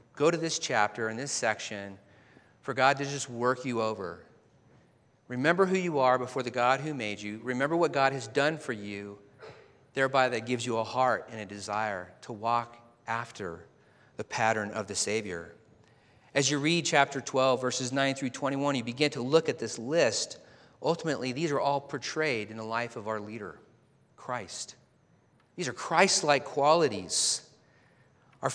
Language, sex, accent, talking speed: English, male, American, 170 wpm